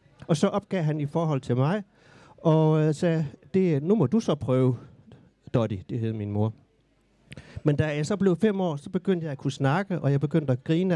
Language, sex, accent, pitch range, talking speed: Danish, male, native, 135-180 Hz, 215 wpm